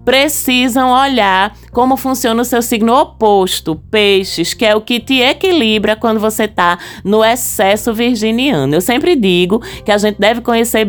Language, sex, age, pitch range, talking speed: Portuguese, female, 20-39, 190-245 Hz, 160 wpm